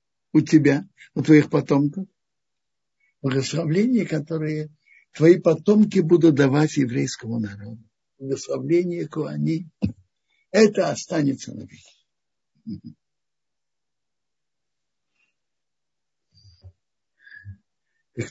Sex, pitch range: male, 125-185 Hz